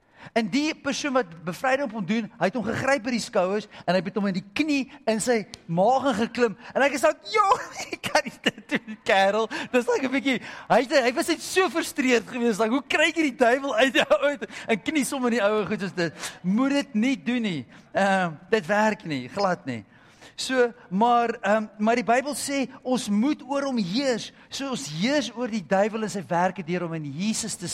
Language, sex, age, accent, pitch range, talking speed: English, male, 40-59, Dutch, 140-235 Hz, 220 wpm